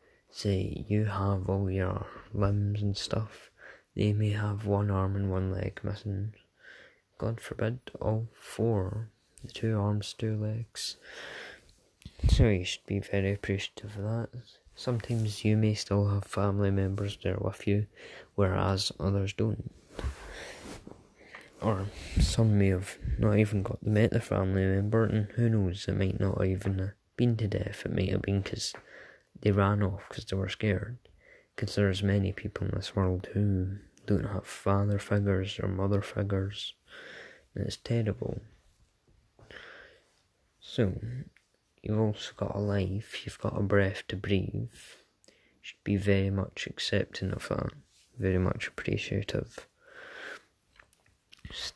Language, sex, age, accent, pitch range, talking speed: English, male, 20-39, British, 95-110 Hz, 140 wpm